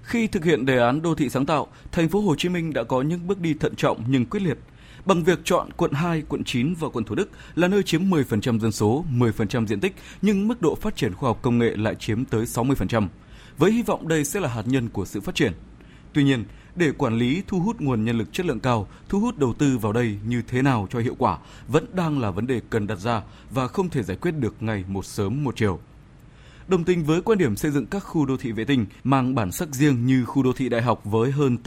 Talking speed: 260 wpm